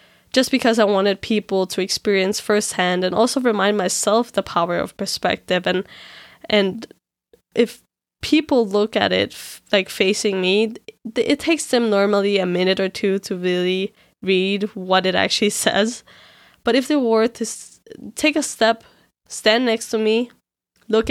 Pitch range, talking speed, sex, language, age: 195-230 Hz, 160 wpm, female, English, 10-29